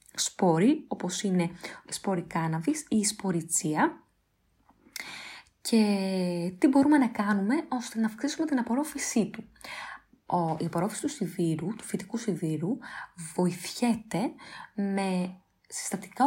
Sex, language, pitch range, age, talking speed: female, Greek, 180-240 Hz, 20-39, 105 wpm